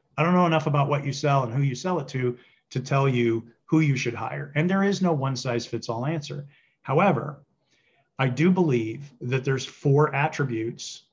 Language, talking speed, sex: English, 205 wpm, male